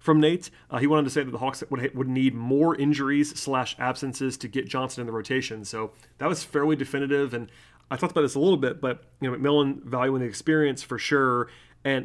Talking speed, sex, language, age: 230 wpm, male, English, 30-49